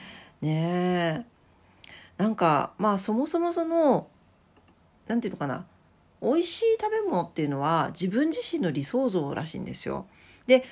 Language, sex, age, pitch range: Japanese, female, 40-59, 155-245 Hz